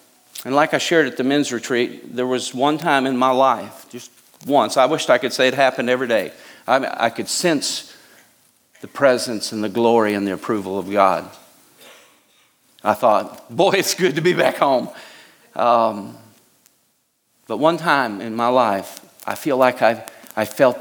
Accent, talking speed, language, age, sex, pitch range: American, 180 wpm, English, 50-69, male, 105-140 Hz